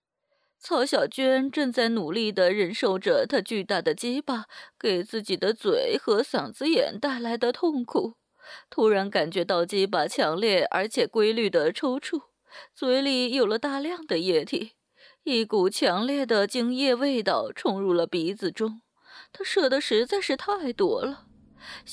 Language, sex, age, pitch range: Chinese, female, 20-39, 210-275 Hz